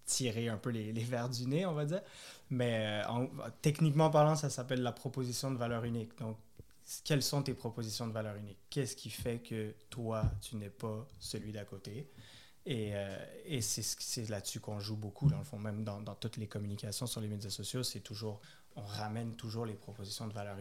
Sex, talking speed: male, 220 wpm